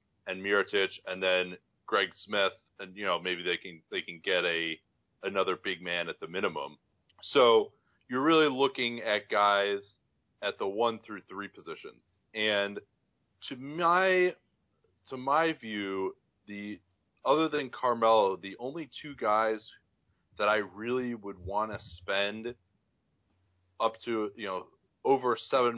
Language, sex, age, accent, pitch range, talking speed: English, male, 30-49, American, 100-115 Hz, 140 wpm